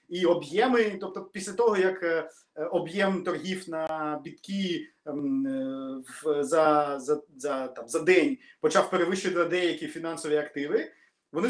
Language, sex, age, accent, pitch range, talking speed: Ukrainian, male, 30-49, native, 170-230 Hz, 120 wpm